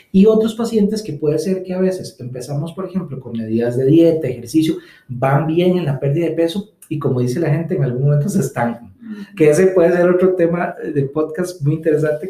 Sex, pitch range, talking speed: male, 130-175 Hz, 215 wpm